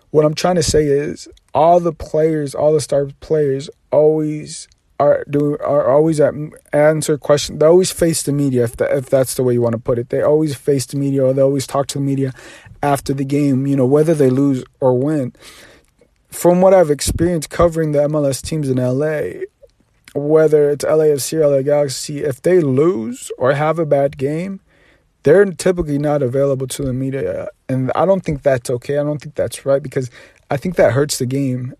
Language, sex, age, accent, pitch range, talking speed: English, male, 30-49, American, 140-155 Hz, 205 wpm